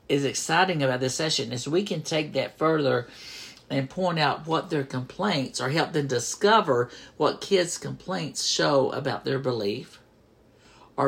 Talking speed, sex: 155 wpm, male